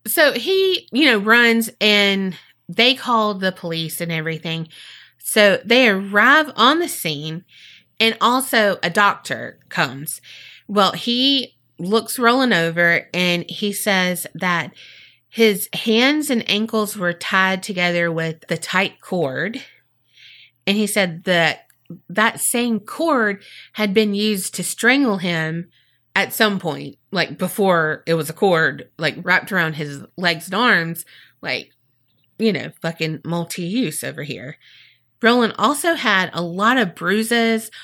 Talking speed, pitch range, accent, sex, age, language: 135 wpm, 170-225 Hz, American, female, 30-49, English